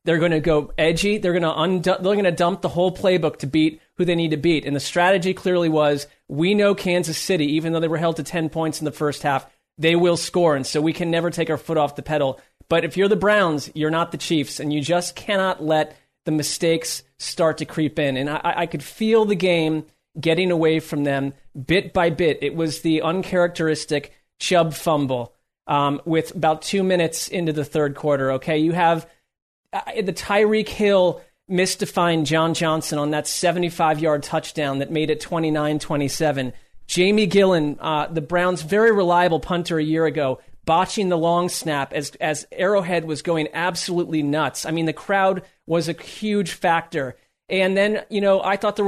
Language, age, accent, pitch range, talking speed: English, 30-49, American, 155-180 Hz, 200 wpm